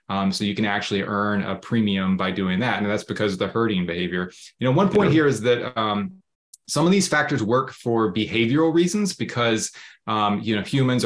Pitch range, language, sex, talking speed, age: 105-125 Hz, English, male, 210 wpm, 20-39